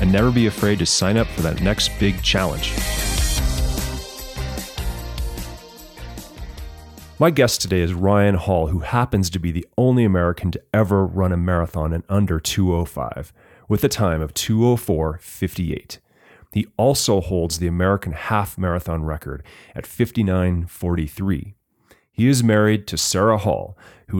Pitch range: 85-105 Hz